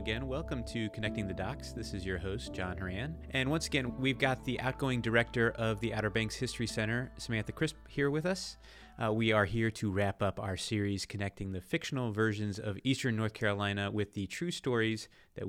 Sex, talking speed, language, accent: male, 205 wpm, English, American